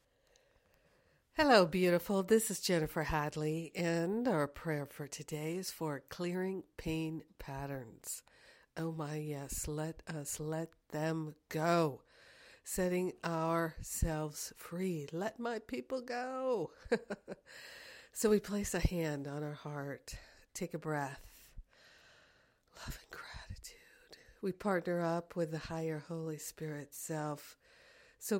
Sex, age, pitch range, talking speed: female, 60-79, 150-175 Hz, 115 wpm